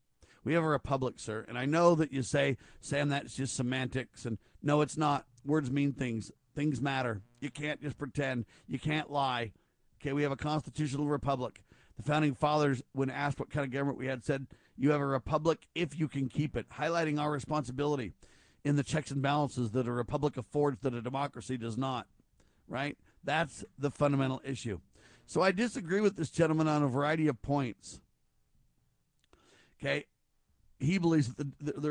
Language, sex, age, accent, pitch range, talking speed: English, male, 50-69, American, 125-155 Hz, 180 wpm